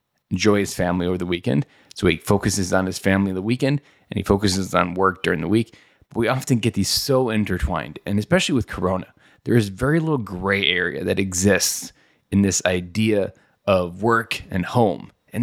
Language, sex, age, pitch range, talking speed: English, male, 20-39, 95-110 Hz, 190 wpm